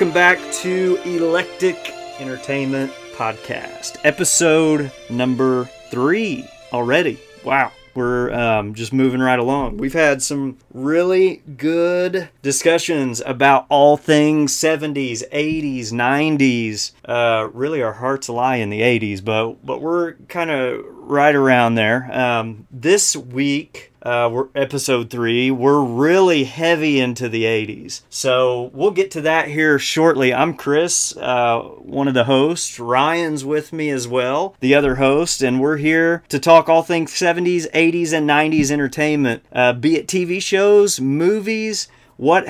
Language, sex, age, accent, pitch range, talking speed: English, male, 30-49, American, 125-165 Hz, 140 wpm